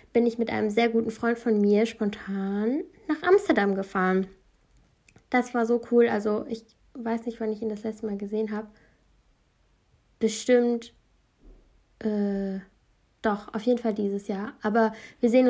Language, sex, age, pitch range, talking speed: German, female, 10-29, 210-235 Hz, 155 wpm